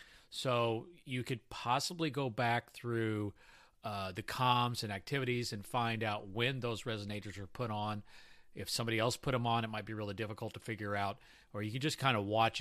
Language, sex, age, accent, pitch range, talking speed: English, male, 40-59, American, 110-135 Hz, 200 wpm